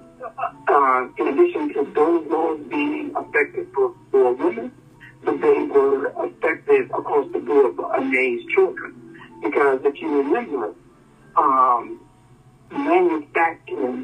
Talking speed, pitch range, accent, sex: 115 wpm, 345-410 Hz, American, male